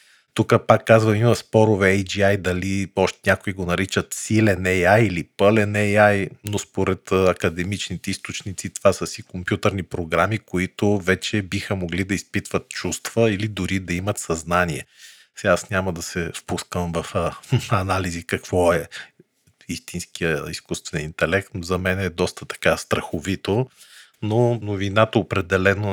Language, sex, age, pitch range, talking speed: Bulgarian, male, 40-59, 90-105 Hz, 140 wpm